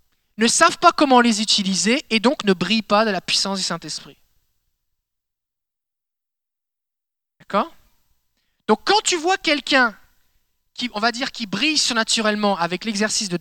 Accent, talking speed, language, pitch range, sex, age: French, 145 wpm, French, 195-270 Hz, male, 20-39